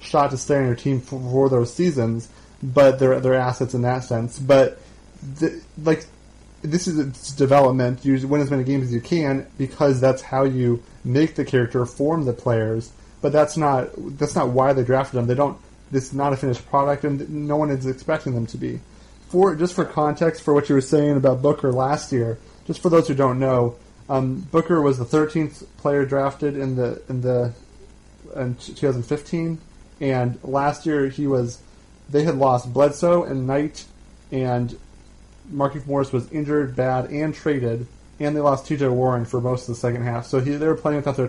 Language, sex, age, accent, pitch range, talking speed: English, male, 30-49, American, 125-145 Hz, 200 wpm